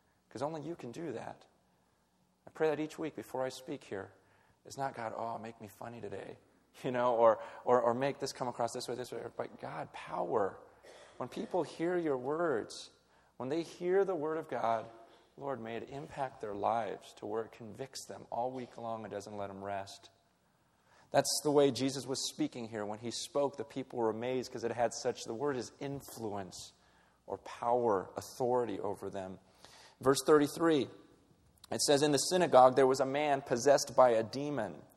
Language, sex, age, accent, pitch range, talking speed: English, male, 40-59, American, 120-155 Hz, 190 wpm